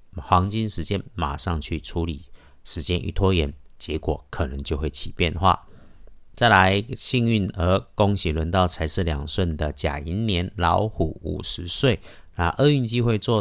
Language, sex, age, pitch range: Chinese, male, 50-69, 80-100 Hz